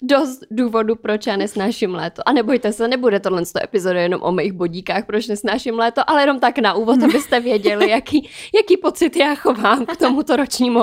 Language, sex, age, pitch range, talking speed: Czech, female, 20-39, 210-305 Hz, 200 wpm